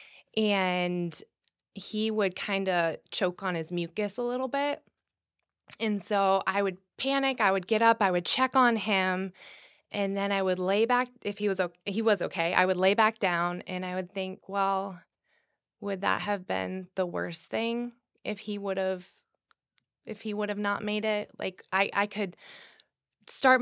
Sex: female